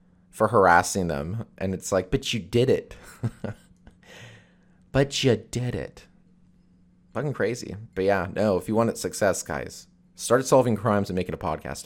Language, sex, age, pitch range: English, male, 30-49, 90-120 Hz